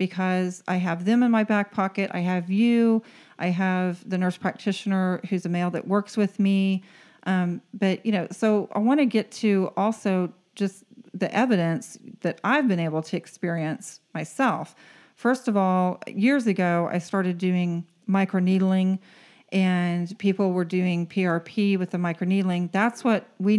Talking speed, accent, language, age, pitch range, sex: 165 wpm, American, English, 40-59, 175-205 Hz, female